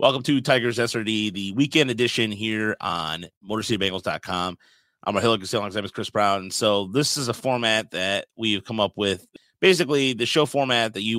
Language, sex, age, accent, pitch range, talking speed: English, male, 30-49, American, 100-130 Hz, 190 wpm